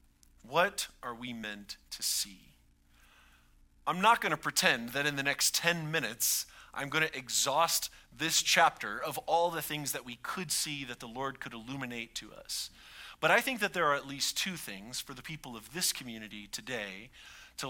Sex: male